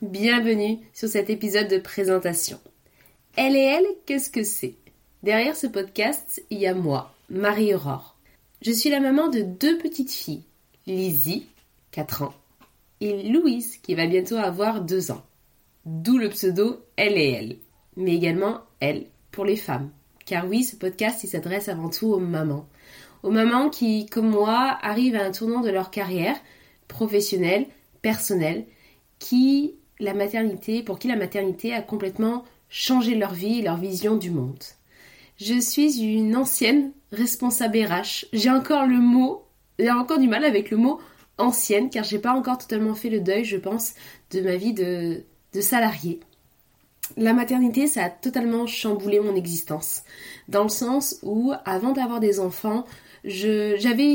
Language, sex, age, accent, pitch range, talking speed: French, female, 20-39, French, 185-240 Hz, 165 wpm